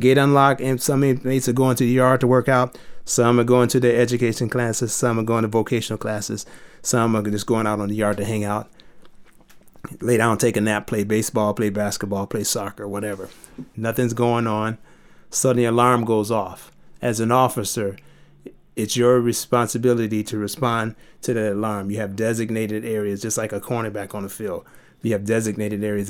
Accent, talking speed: American, 190 wpm